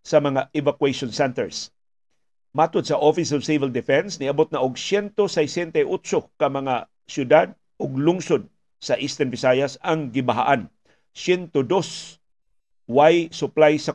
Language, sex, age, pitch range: Filipino, male, 50-69, 140-165 Hz